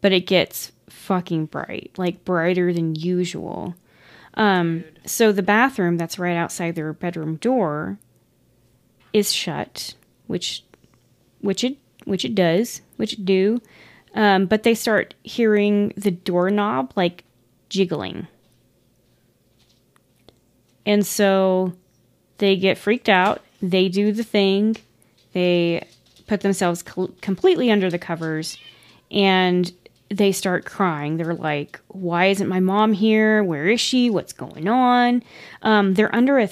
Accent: American